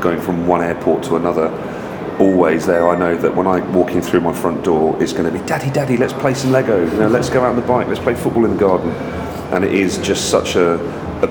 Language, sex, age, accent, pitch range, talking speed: English, male, 40-59, British, 85-100 Hz, 255 wpm